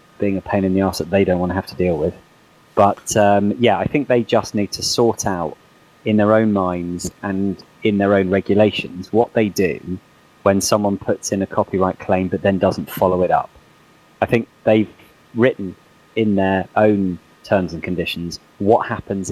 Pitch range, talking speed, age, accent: 95-110 Hz, 195 wpm, 30-49, British